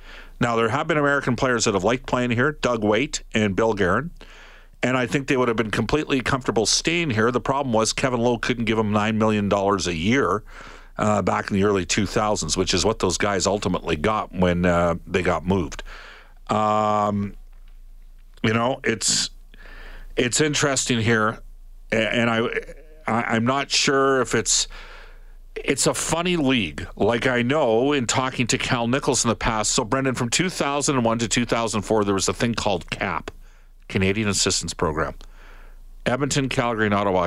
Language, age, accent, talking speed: English, 50-69, American, 180 wpm